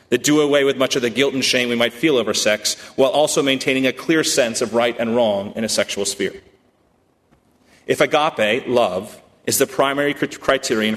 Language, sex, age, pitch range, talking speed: English, male, 30-49, 115-140 Hz, 195 wpm